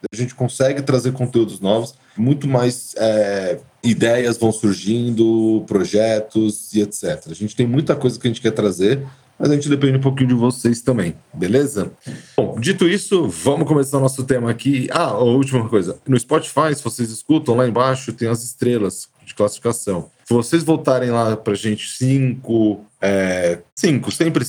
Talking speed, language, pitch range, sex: 170 wpm, Portuguese, 110-135 Hz, male